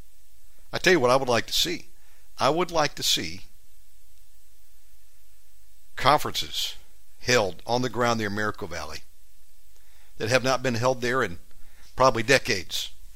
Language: English